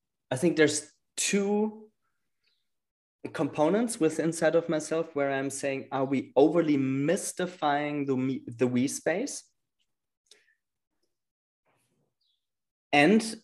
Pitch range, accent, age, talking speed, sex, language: 115-140 Hz, German, 20-39, 95 wpm, male, English